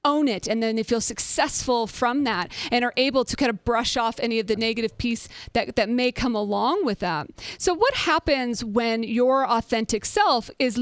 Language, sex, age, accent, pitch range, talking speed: English, female, 40-59, American, 220-265 Hz, 205 wpm